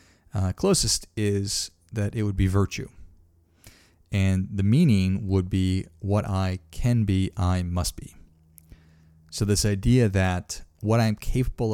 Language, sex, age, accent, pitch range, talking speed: English, male, 40-59, American, 95-105 Hz, 140 wpm